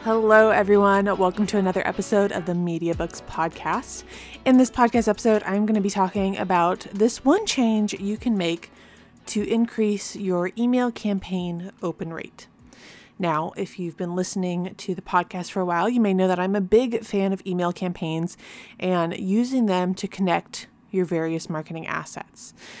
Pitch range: 175-220 Hz